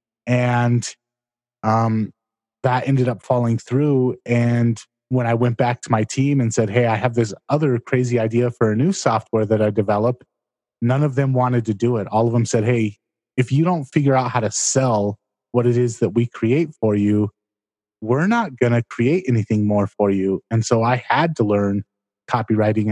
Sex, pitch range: male, 110-130 Hz